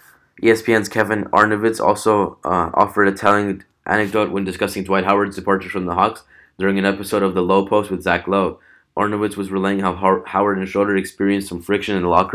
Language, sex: English, male